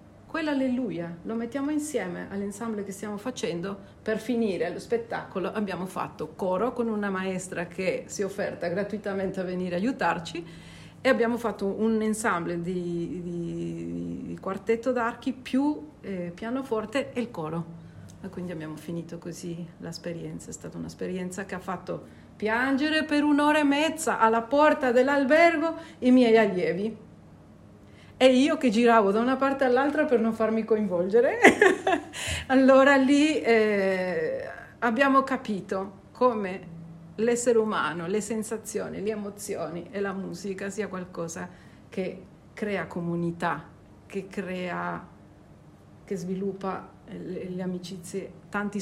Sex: female